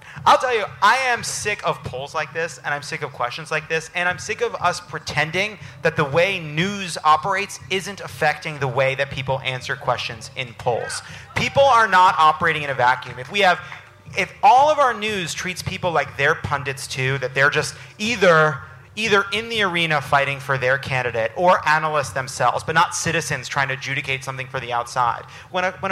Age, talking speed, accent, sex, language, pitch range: 30-49, 200 wpm, American, male, English, 140-185 Hz